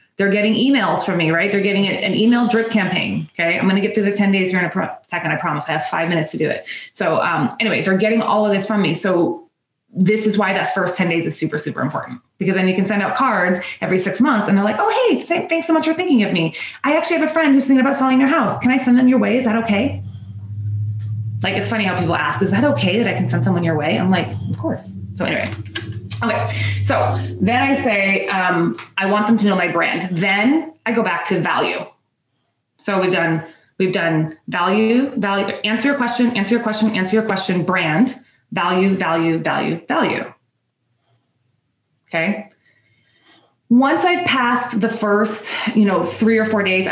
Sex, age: female, 20-39